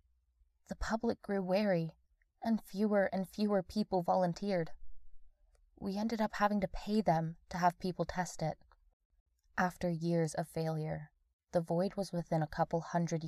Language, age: English, 20-39